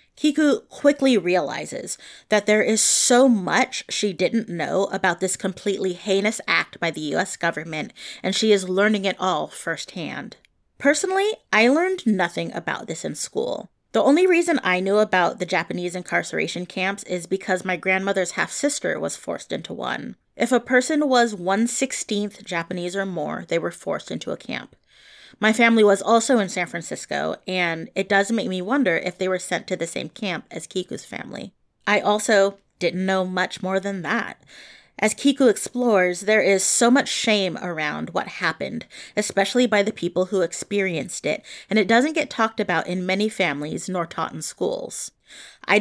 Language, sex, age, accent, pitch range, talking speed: English, female, 30-49, American, 185-230 Hz, 175 wpm